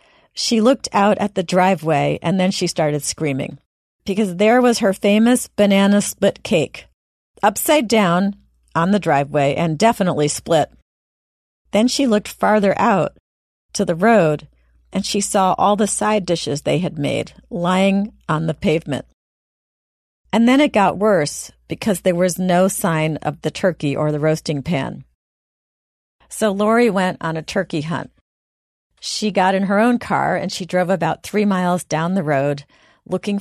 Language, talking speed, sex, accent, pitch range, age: English, 160 wpm, female, American, 155-205 Hz, 40-59